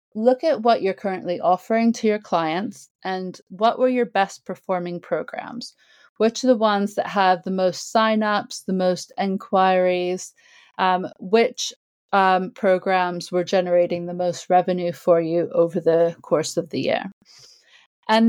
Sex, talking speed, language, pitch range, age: female, 150 wpm, English, 175-210 Hz, 30-49